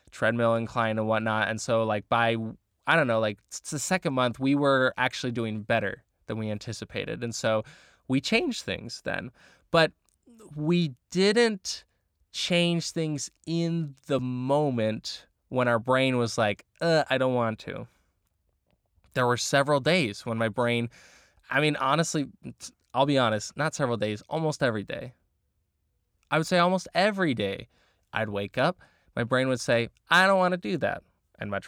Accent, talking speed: American, 165 wpm